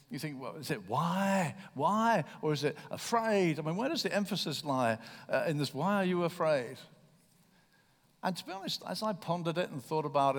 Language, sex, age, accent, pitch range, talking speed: English, male, 60-79, British, 150-200 Hz, 210 wpm